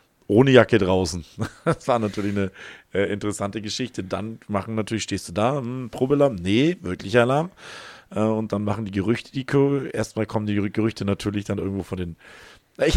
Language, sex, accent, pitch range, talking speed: German, male, German, 100-115 Hz, 180 wpm